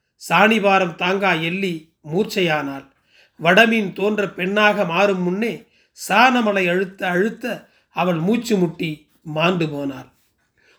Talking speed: 95 wpm